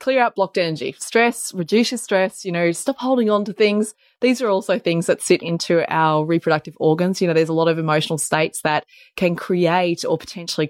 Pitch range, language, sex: 160-205 Hz, English, female